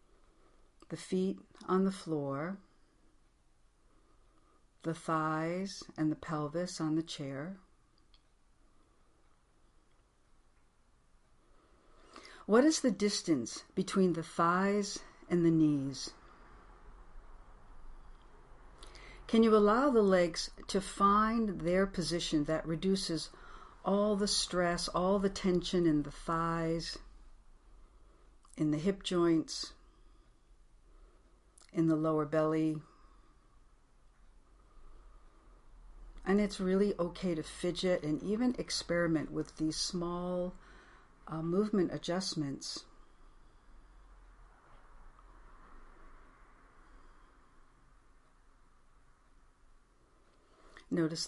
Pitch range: 155-195 Hz